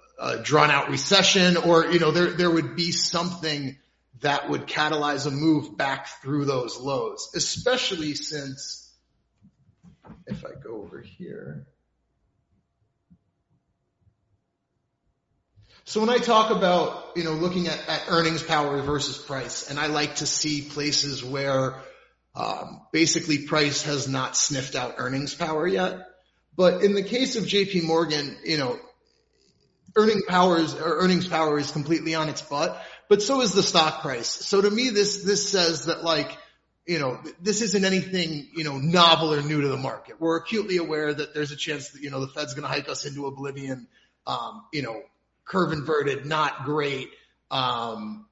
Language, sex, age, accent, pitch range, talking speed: English, male, 30-49, American, 145-180 Hz, 160 wpm